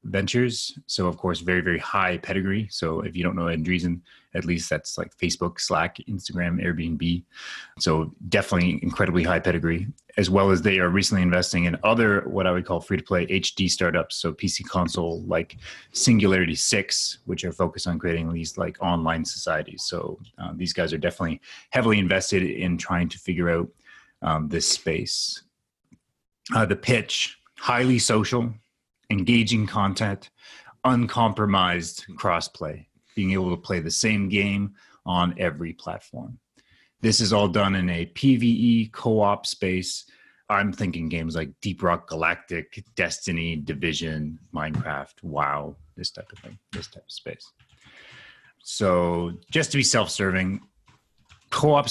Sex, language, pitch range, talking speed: male, English, 85-105 Hz, 145 wpm